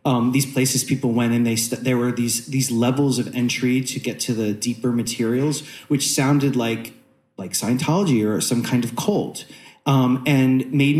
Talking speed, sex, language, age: 180 wpm, male, English, 30-49